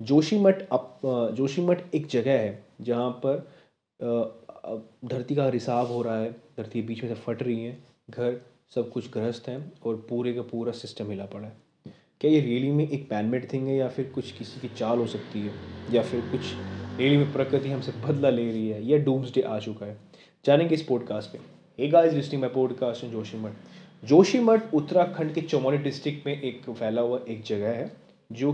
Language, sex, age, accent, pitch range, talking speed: Hindi, male, 20-39, native, 115-150 Hz, 200 wpm